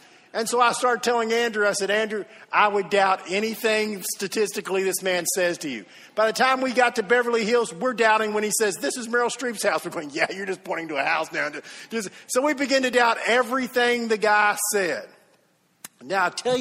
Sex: male